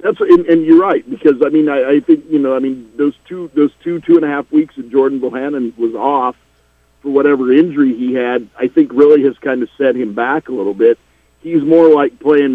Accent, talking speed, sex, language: American, 230 wpm, male, English